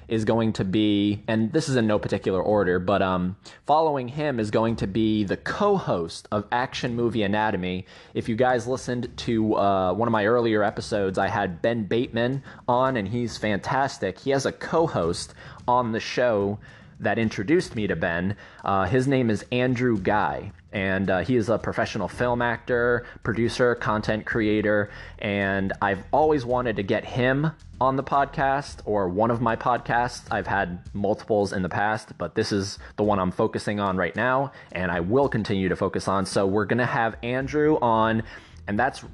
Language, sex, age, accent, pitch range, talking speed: English, male, 20-39, American, 100-125 Hz, 180 wpm